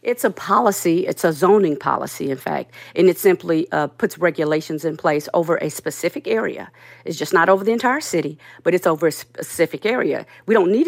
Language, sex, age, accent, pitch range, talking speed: English, female, 50-69, American, 165-205 Hz, 205 wpm